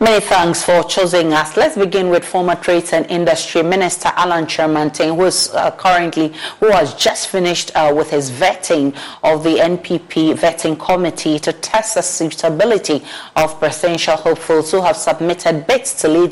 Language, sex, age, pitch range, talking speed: English, female, 40-59, 155-180 Hz, 160 wpm